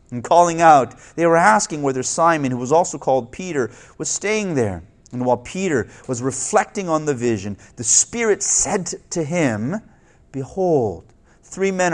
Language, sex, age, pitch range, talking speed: English, male, 30-49, 115-160 Hz, 160 wpm